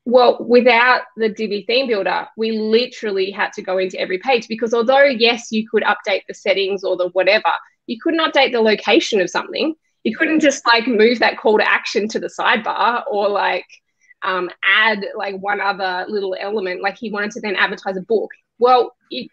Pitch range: 200-260 Hz